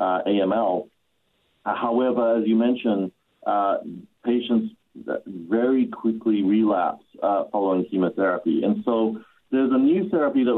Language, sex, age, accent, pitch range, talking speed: English, male, 50-69, American, 105-125 Hz, 130 wpm